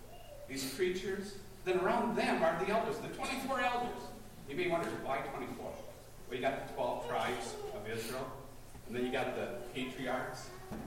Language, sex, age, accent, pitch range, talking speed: English, male, 50-69, American, 120-185 Hz, 165 wpm